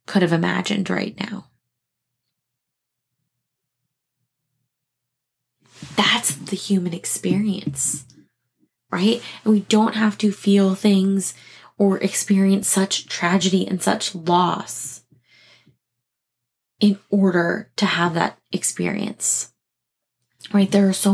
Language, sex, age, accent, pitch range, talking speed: English, female, 20-39, American, 135-195 Hz, 95 wpm